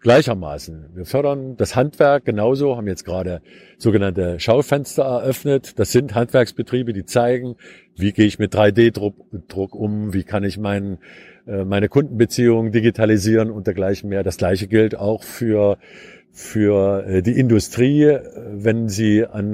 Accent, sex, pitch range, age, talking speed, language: German, male, 100-115 Hz, 50-69, 135 wpm, German